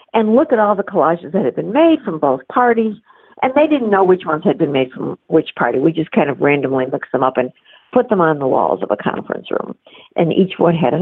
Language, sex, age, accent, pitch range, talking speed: English, female, 50-69, American, 165-245 Hz, 260 wpm